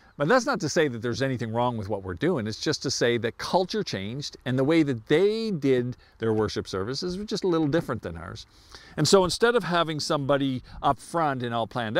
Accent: American